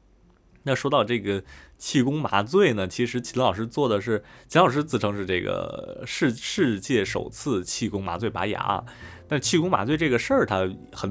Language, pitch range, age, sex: Chinese, 95-115 Hz, 20-39, male